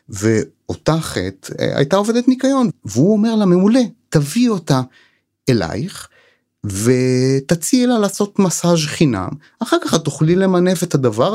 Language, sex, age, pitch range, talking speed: Hebrew, male, 30-49, 120-170 Hz, 115 wpm